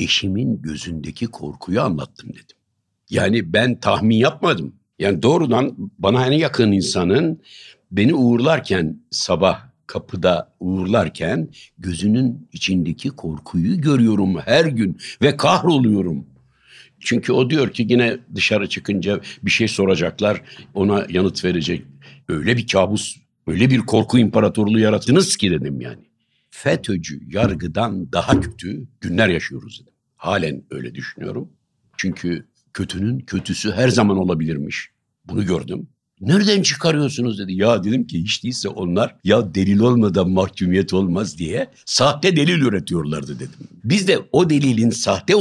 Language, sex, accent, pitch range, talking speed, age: Turkish, male, native, 95-125 Hz, 125 wpm, 60-79